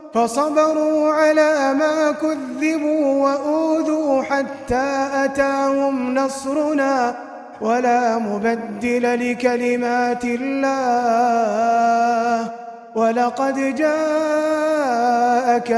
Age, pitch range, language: 20-39, 240-305 Hz, Arabic